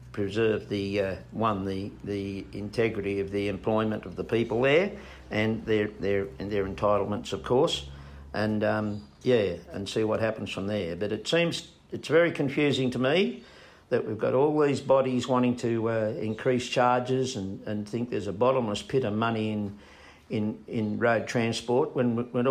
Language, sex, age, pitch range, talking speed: English, male, 50-69, 105-130 Hz, 175 wpm